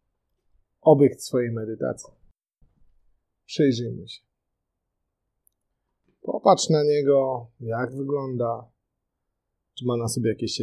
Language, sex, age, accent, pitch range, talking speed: Polish, male, 30-49, native, 105-135 Hz, 85 wpm